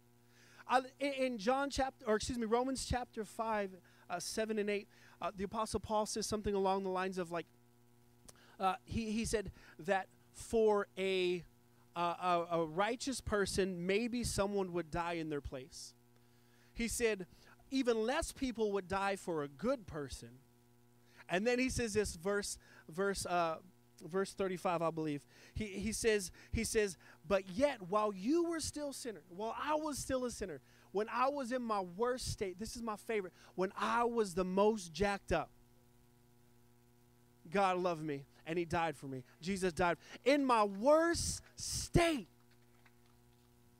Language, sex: English, male